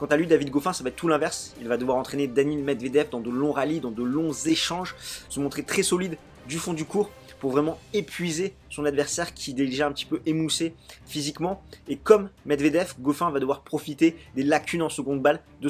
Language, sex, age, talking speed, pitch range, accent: French, male, 20-39, 220 wpm, 135-165 Hz, French